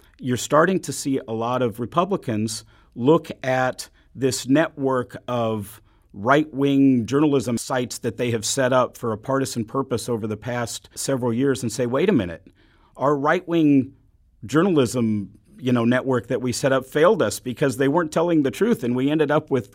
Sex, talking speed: male, 180 wpm